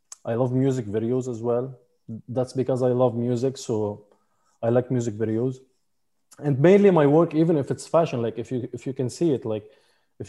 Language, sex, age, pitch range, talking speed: Hindi, male, 20-39, 115-135 Hz, 200 wpm